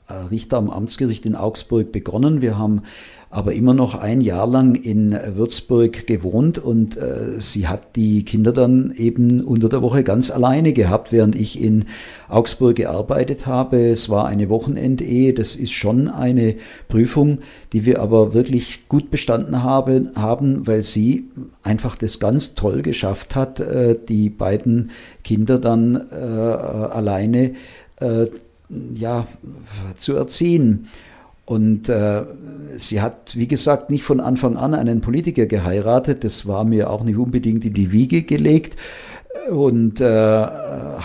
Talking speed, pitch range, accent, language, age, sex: 140 wpm, 105-130 Hz, German, German, 50-69, male